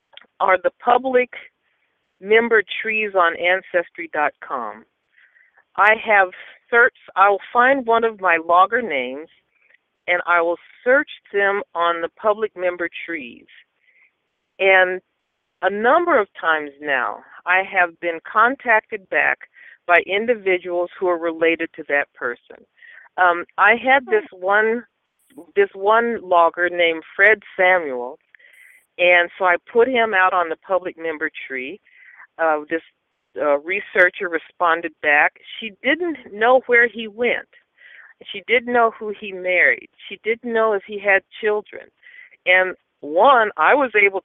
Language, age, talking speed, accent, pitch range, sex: English, 50-69, 135 wpm, American, 175-235 Hz, female